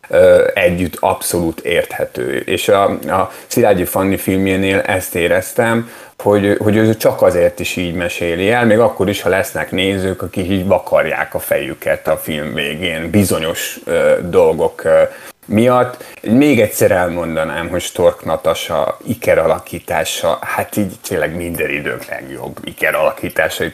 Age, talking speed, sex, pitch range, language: 30-49, 135 wpm, male, 95-140 Hz, Hungarian